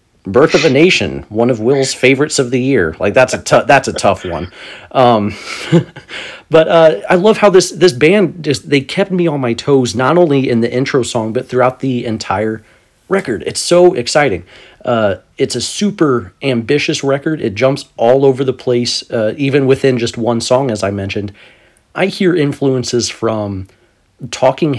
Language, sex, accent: English, male, American